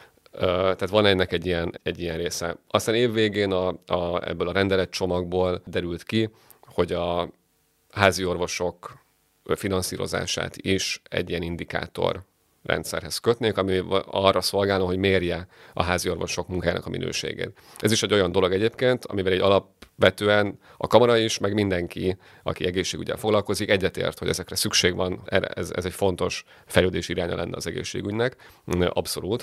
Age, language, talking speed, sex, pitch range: 30-49, Hungarian, 145 wpm, male, 90-100 Hz